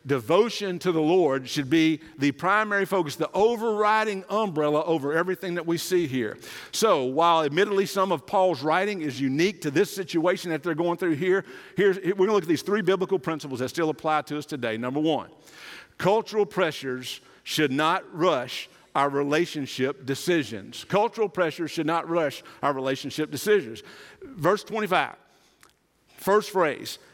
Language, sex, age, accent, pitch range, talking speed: English, male, 50-69, American, 150-200 Hz, 160 wpm